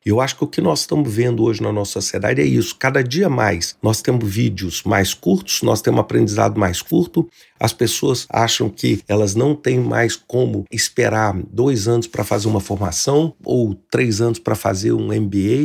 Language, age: Portuguese, 50-69